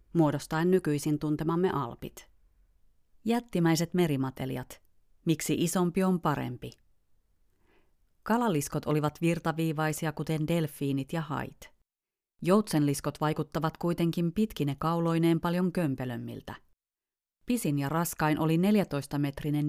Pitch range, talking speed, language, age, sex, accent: 145-175 Hz, 90 wpm, Finnish, 30-49, female, native